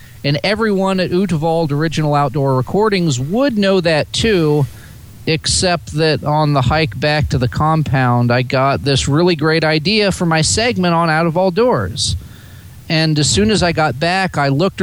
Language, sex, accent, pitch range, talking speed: English, male, American, 120-165 Hz, 175 wpm